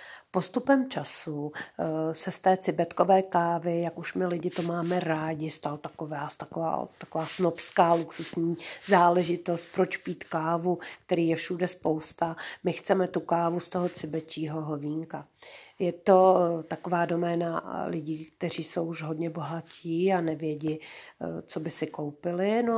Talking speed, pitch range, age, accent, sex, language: 140 wpm, 160-175 Hz, 40-59, native, female, Czech